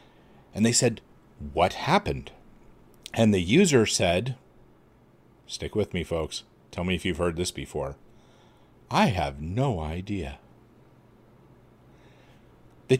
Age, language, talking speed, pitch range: 40-59, English, 115 wpm, 85-115 Hz